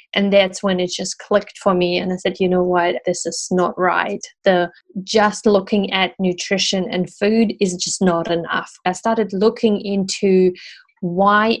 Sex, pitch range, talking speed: female, 180-205 Hz, 175 wpm